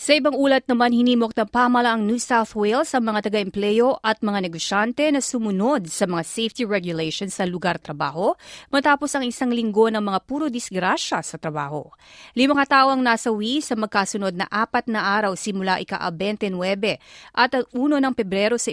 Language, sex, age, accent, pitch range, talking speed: Filipino, female, 30-49, native, 195-245 Hz, 165 wpm